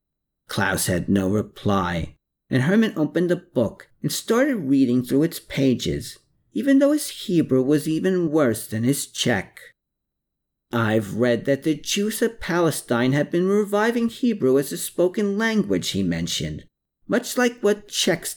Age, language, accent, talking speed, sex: 50-69, English, American, 150 wpm, male